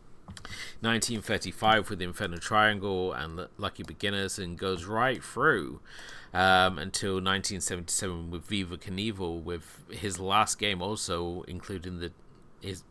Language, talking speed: English, 115 wpm